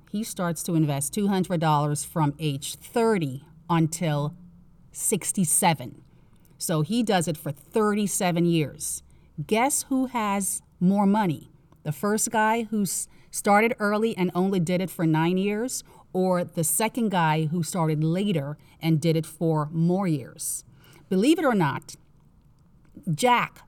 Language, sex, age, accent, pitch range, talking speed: English, female, 40-59, American, 155-200 Hz, 135 wpm